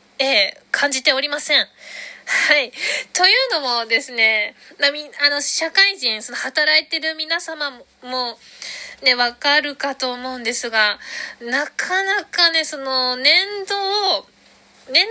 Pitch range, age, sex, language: 230-310 Hz, 20-39, female, Japanese